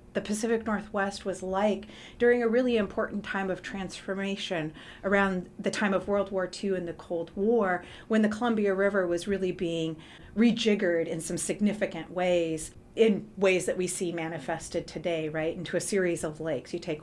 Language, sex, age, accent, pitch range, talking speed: English, female, 40-59, American, 175-210 Hz, 175 wpm